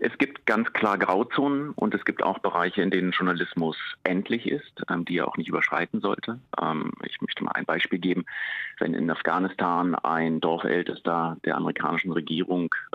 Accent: German